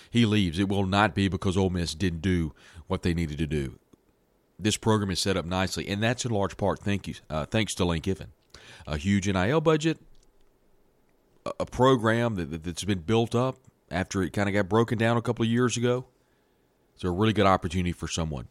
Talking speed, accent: 210 wpm, American